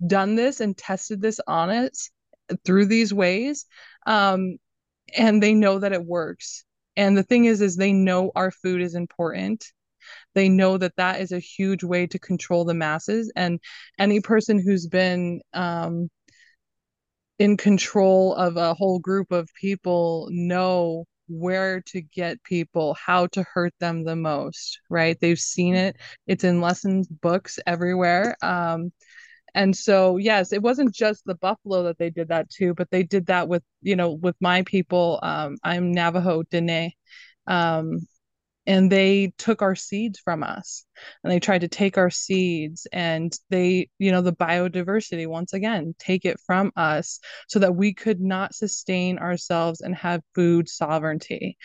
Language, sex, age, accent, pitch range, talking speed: English, female, 20-39, American, 175-200 Hz, 165 wpm